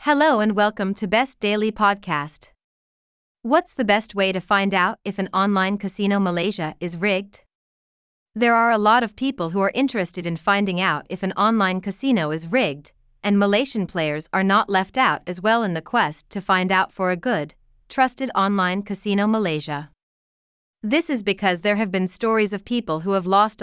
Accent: American